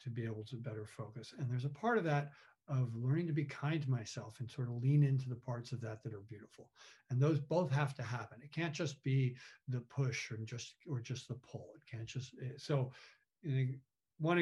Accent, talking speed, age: American, 220 wpm, 50-69